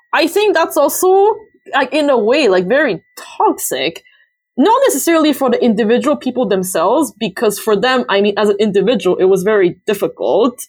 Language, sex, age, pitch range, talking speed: English, female, 20-39, 195-270 Hz, 170 wpm